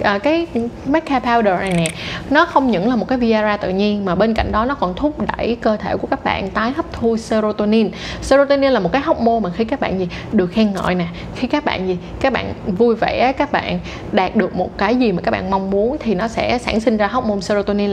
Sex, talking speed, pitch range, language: female, 250 wpm, 195-250 Hz, Vietnamese